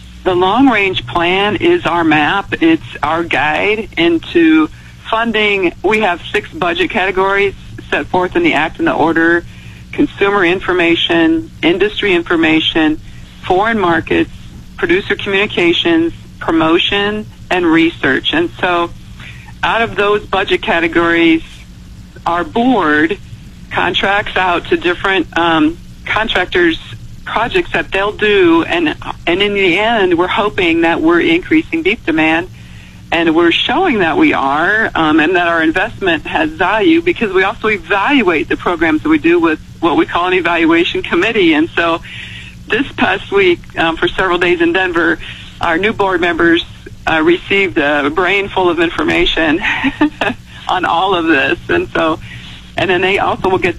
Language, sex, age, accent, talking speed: English, female, 50-69, American, 145 wpm